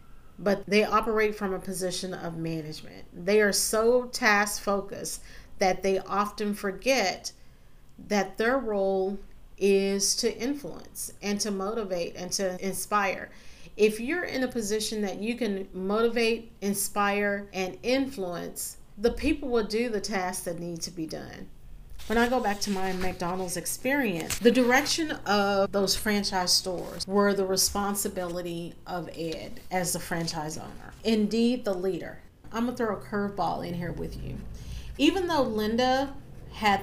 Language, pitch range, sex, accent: English, 185-230 Hz, female, American